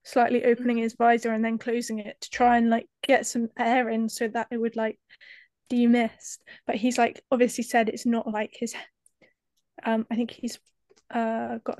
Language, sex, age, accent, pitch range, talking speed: English, female, 10-29, British, 225-245 Hz, 190 wpm